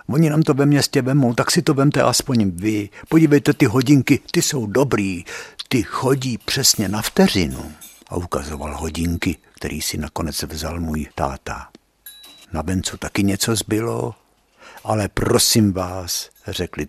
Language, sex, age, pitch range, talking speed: Czech, male, 60-79, 85-120 Hz, 145 wpm